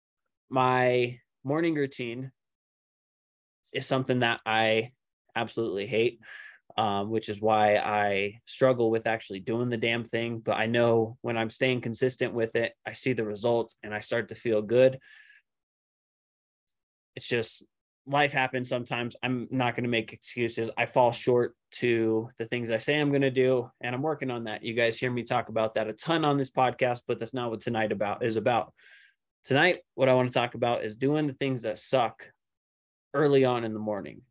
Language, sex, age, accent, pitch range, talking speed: English, male, 20-39, American, 110-130 Hz, 185 wpm